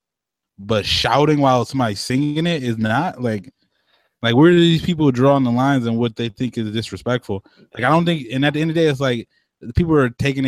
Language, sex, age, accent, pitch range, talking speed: English, male, 20-39, American, 105-135 Hz, 235 wpm